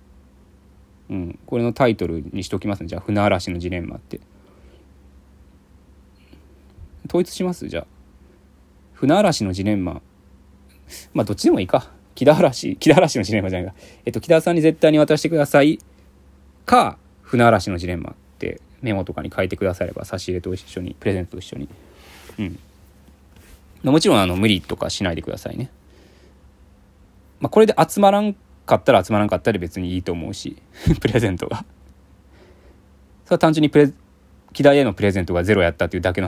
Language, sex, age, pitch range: Japanese, male, 20-39, 70-100 Hz